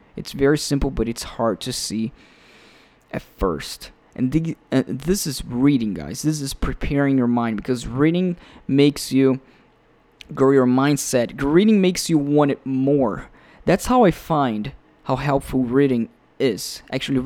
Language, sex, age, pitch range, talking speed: English, male, 20-39, 120-145 Hz, 150 wpm